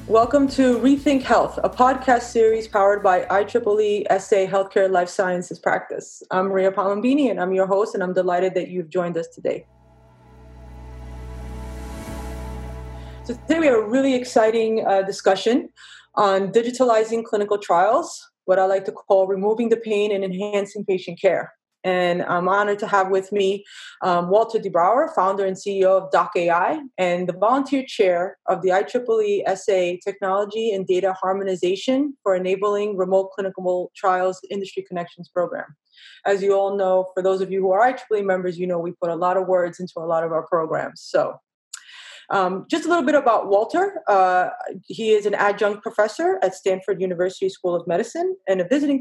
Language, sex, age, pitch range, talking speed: English, female, 30-49, 180-225 Hz, 170 wpm